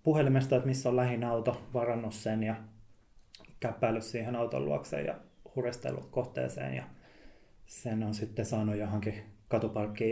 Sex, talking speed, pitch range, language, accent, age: male, 135 wpm, 105-120 Hz, Finnish, native, 20-39